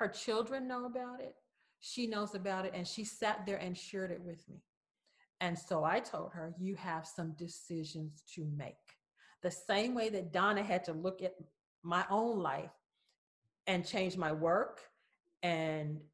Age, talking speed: 40-59, 170 wpm